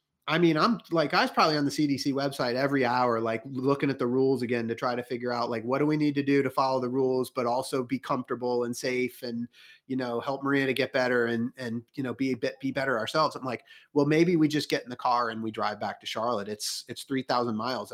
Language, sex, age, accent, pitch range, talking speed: English, male, 30-49, American, 125-150 Hz, 270 wpm